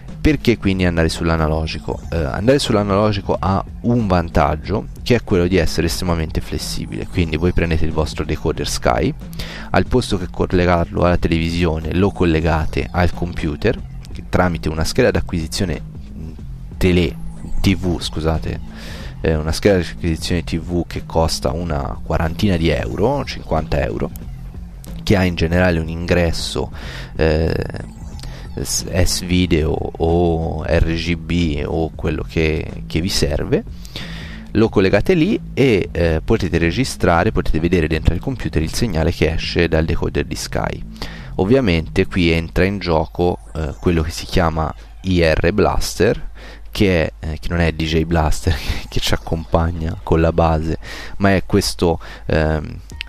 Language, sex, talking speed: Italian, male, 135 wpm